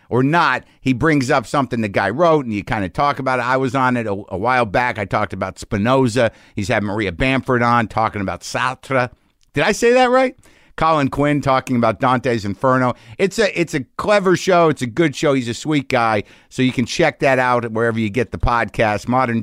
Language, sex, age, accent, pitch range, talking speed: English, male, 50-69, American, 110-135 Hz, 225 wpm